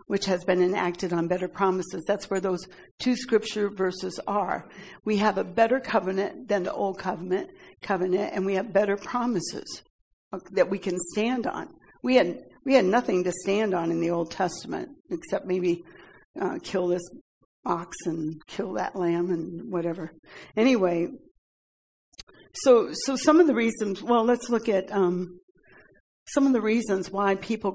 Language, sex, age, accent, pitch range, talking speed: English, female, 60-79, American, 185-215 Hz, 165 wpm